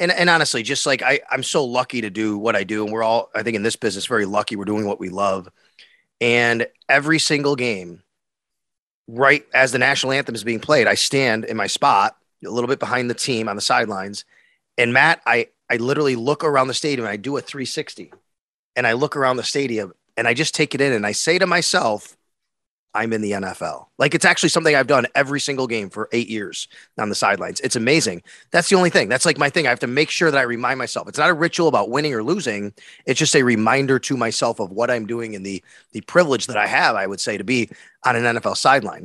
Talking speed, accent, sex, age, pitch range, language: 245 wpm, American, male, 30-49, 115-155 Hz, English